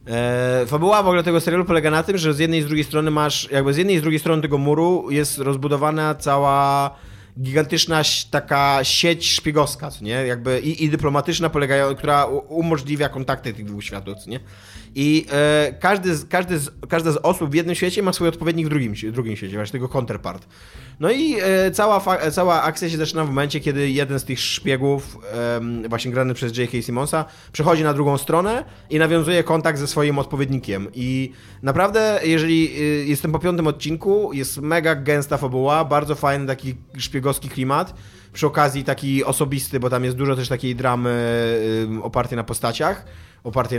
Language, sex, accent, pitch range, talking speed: Polish, male, native, 125-155 Hz, 185 wpm